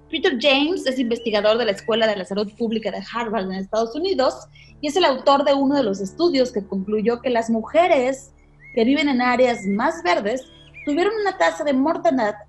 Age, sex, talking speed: 30-49, female, 195 wpm